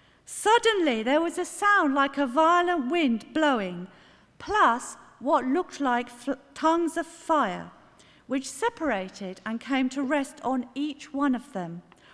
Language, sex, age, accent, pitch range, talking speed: English, female, 50-69, British, 235-335 Hz, 140 wpm